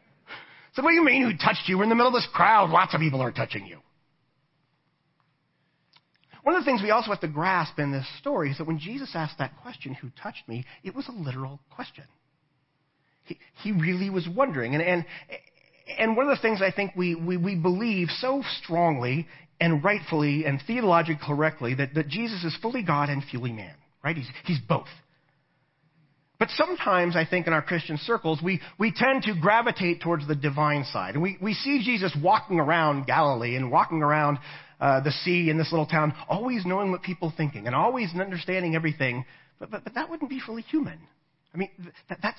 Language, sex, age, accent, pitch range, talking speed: English, male, 40-59, American, 150-220 Hz, 205 wpm